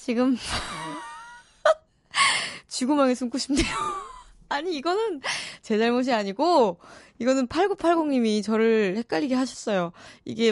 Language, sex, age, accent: Korean, female, 20-39, native